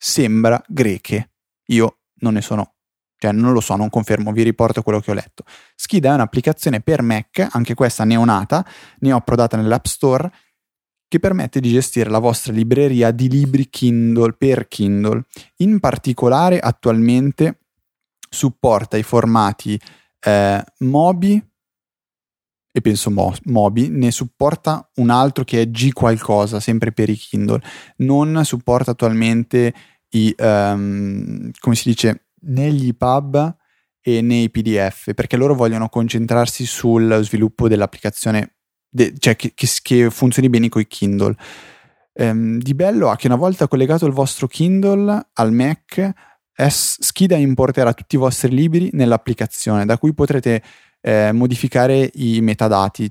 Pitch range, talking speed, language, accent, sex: 110-135 Hz, 140 wpm, Italian, native, male